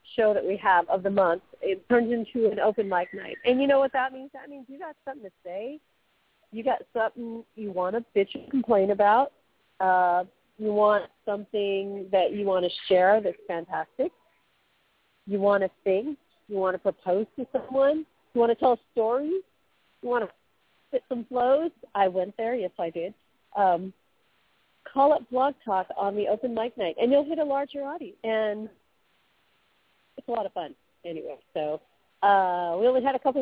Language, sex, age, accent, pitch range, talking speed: English, female, 40-59, American, 190-250 Hz, 190 wpm